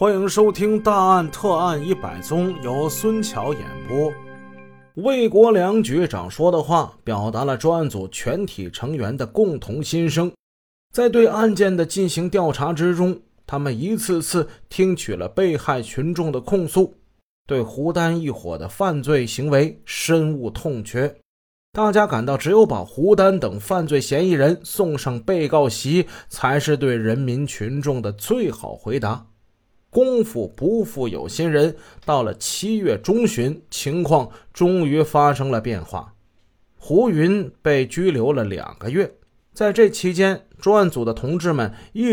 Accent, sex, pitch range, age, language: native, male, 120-185 Hz, 30-49, Chinese